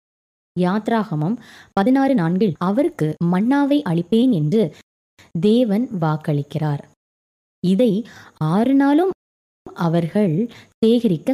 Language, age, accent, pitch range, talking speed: Tamil, 20-39, native, 170-240 Hz, 75 wpm